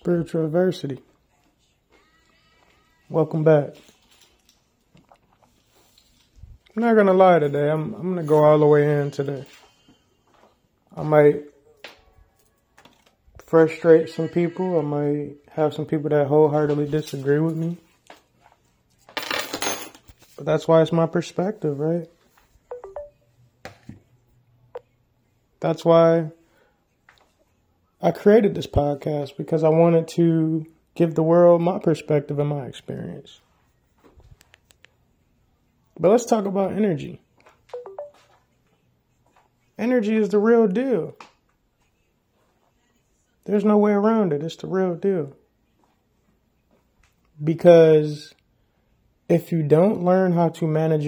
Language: English